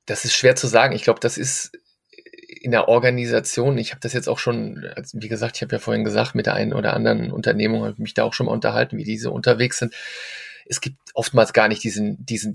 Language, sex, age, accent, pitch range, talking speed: German, male, 30-49, German, 115-145 Hz, 245 wpm